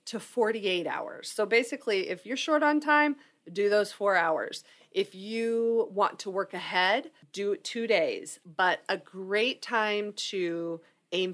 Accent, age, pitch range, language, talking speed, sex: American, 40-59, 180-235 Hz, English, 160 wpm, female